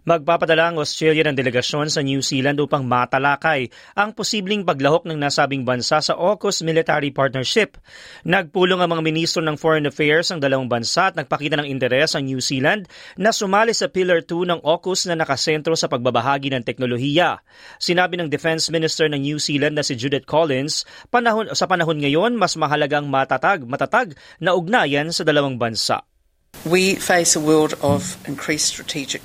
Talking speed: 165 wpm